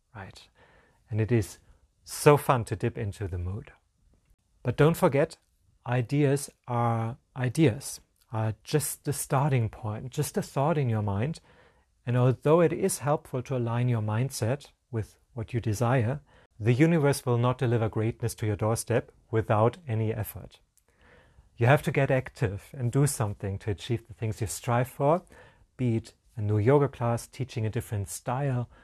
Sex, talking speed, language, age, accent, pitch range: male, 160 wpm, English, 40-59, German, 110-140 Hz